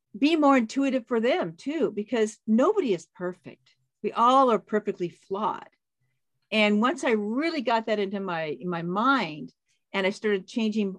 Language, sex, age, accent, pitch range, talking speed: English, female, 50-69, American, 165-220 Hz, 165 wpm